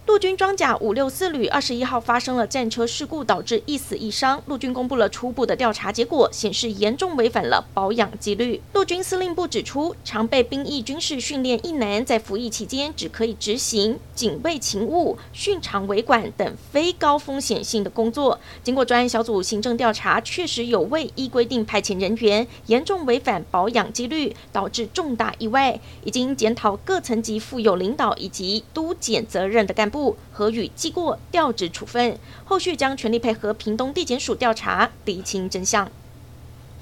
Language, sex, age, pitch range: Chinese, female, 30-49, 220-285 Hz